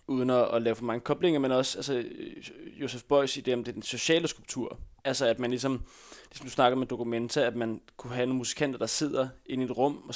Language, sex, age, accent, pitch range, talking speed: Danish, male, 20-39, native, 120-140 Hz, 250 wpm